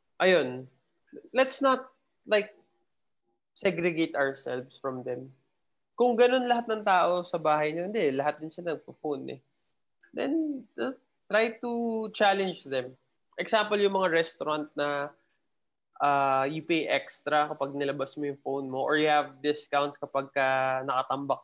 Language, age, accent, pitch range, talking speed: English, 20-39, Filipino, 145-185 Hz, 140 wpm